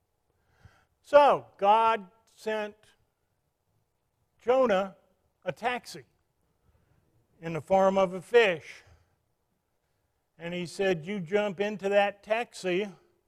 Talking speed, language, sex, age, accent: 90 wpm, English, male, 50-69, American